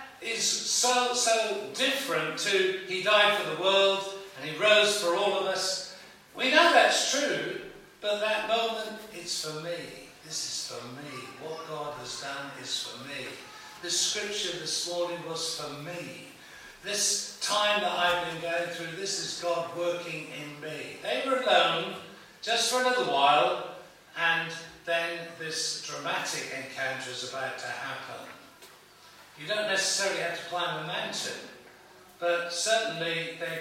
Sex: male